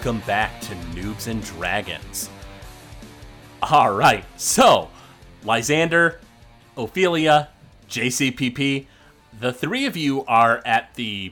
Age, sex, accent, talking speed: 30-49, male, American, 95 wpm